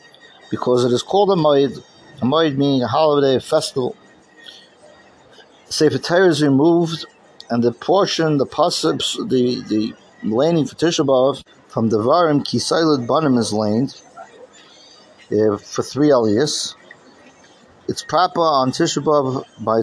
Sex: male